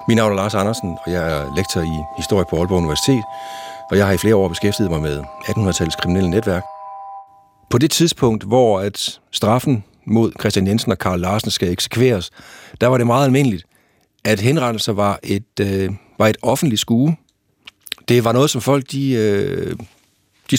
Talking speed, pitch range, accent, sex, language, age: 180 wpm, 100-130 Hz, native, male, Danish, 60-79